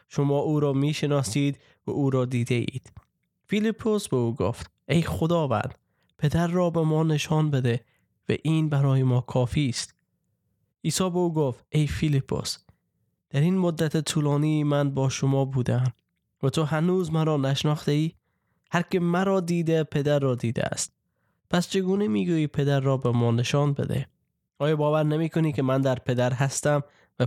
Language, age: Persian, 20-39